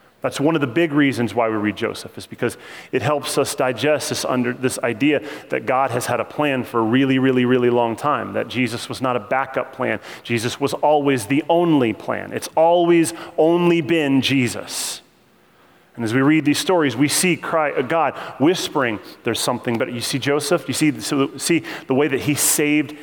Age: 30-49